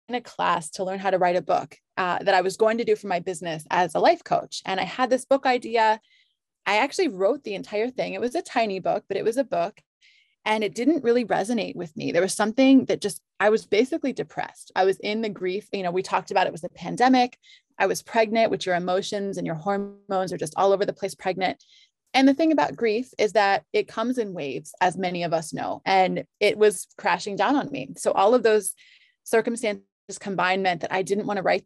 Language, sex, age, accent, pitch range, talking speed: English, female, 20-39, American, 190-250 Hz, 240 wpm